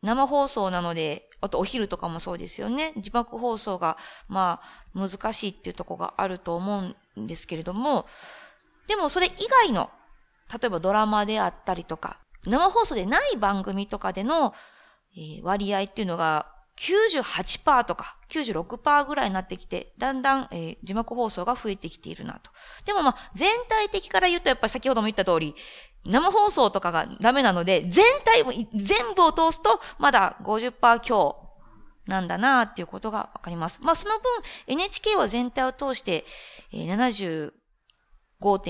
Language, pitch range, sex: Japanese, 190-280 Hz, female